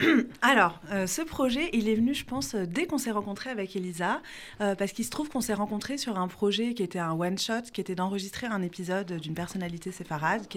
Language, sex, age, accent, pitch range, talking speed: French, female, 30-49, French, 170-215 Hz, 220 wpm